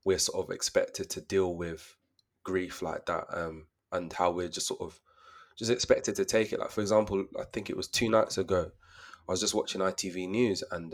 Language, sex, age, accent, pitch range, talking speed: English, male, 20-39, British, 85-105 Hz, 215 wpm